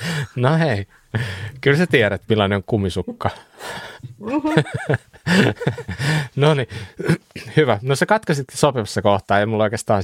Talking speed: 115 wpm